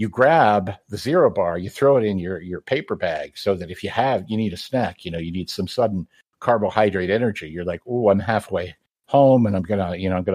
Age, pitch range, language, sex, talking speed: 60-79, 95-125 Hz, English, male, 255 wpm